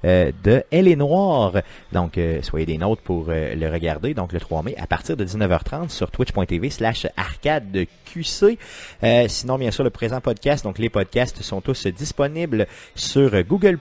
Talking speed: 180 wpm